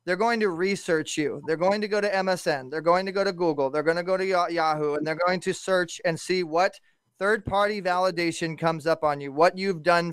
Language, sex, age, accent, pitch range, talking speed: English, male, 20-39, American, 165-200 Hz, 235 wpm